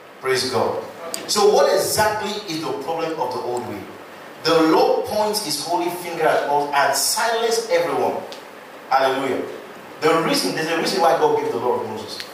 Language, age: English, 40-59